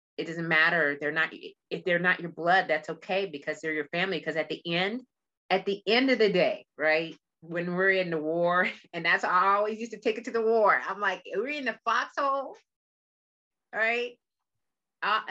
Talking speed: 205 wpm